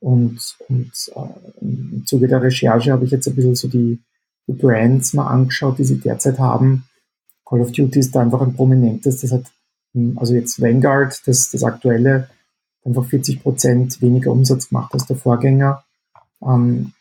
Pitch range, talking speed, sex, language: 125-135 Hz, 165 wpm, male, German